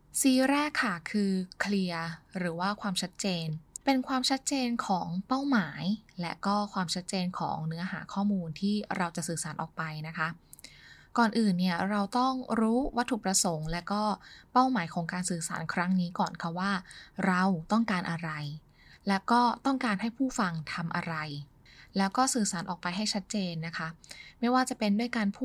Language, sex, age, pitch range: Thai, female, 10-29, 175-225 Hz